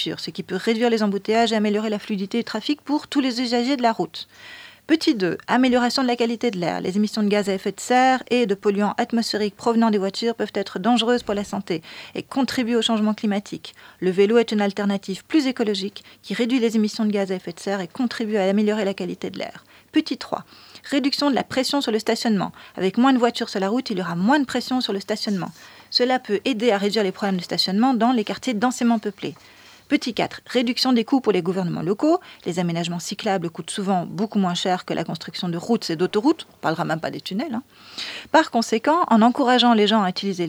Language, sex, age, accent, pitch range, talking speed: French, female, 40-59, French, 190-245 Hz, 235 wpm